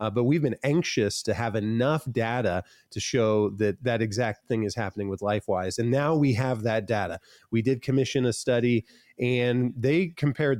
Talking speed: 185 wpm